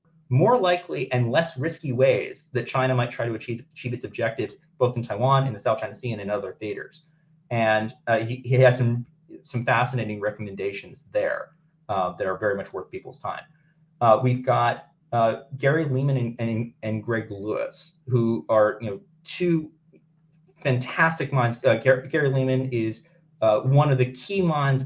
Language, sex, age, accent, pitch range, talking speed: English, male, 30-49, American, 115-155 Hz, 180 wpm